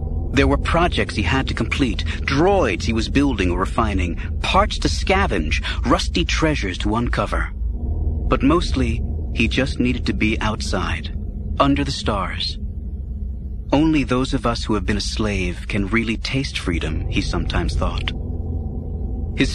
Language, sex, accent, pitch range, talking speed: English, male, American, 80-115 Hz, 145 wpm